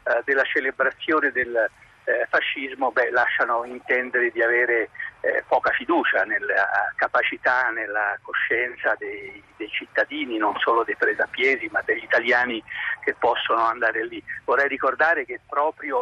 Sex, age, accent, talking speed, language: male, 50-69, native, 125 wpm, Italian